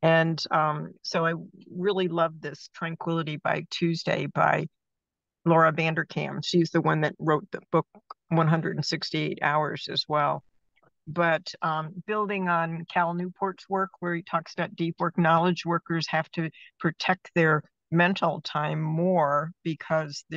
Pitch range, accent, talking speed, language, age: 155-180 Hz, American, 140 wpm, English, 60-79